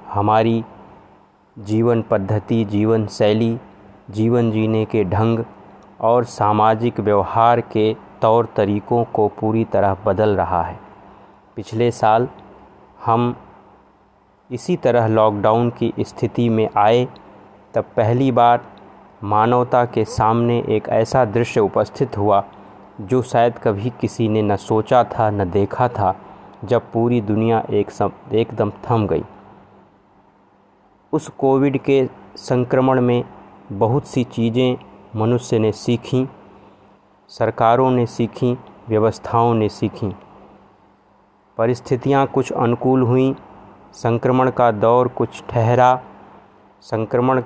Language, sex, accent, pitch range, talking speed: Hindi, male, native, 105-120 Hz, 110 wpm